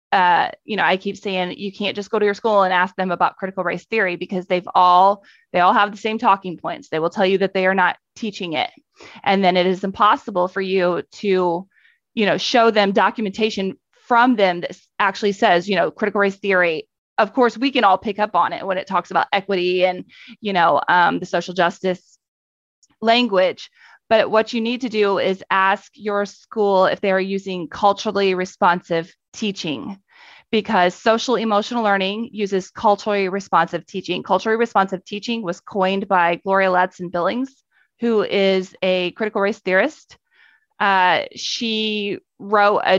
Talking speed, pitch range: 180 wpm, 185-220 Hz